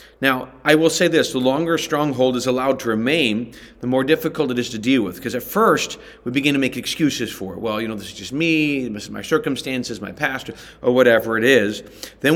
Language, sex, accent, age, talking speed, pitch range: English, male, American, 40-59, 240 wpm, 110-135 Hz